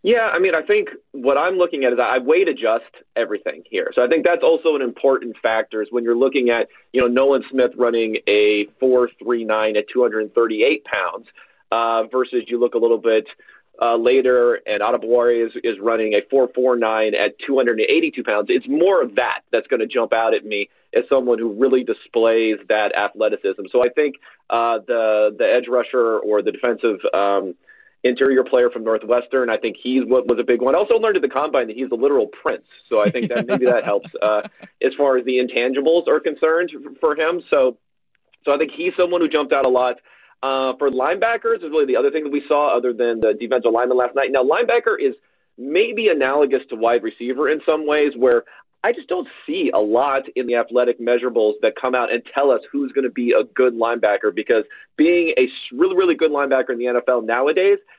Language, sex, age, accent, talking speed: English, male, 30-49, American, 215 wpm